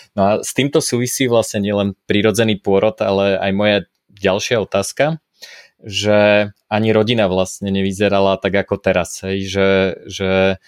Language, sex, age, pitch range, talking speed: Slovak, male, 20-39, 95-105 Hz, 135 wpm